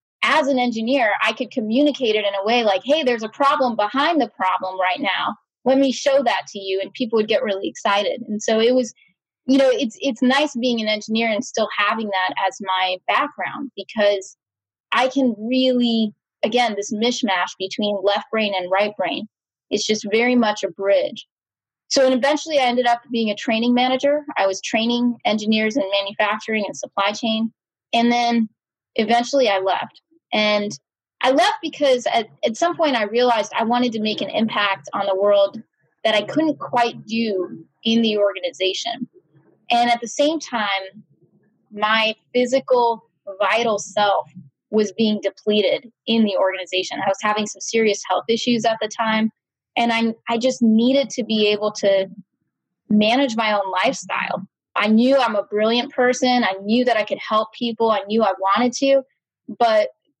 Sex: female